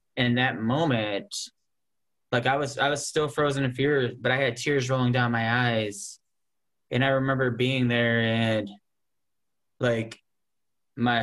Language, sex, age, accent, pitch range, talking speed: English, male, 10-29, American, 115-135 Hz, 150 wpm